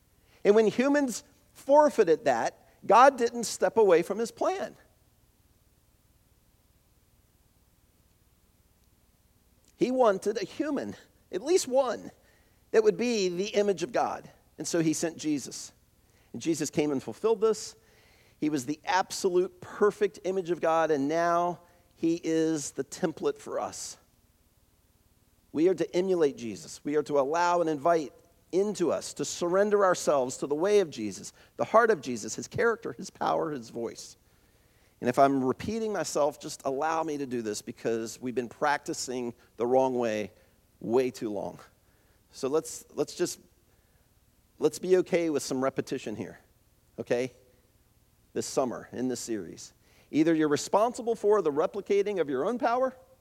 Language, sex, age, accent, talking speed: English, male, 50-69, American, 150 wpm